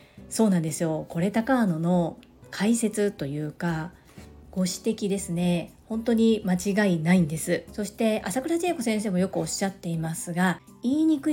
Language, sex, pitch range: Japanese, female, 180-240 Hz